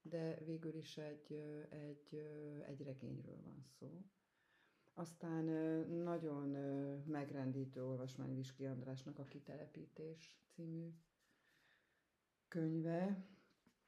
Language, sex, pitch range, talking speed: English, female, 135-160 Hz, 80 wpm